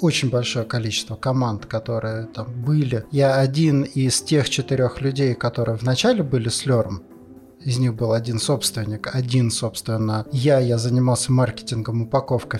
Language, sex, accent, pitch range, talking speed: Russian, male, native, 115-145 Hz, 145 wpm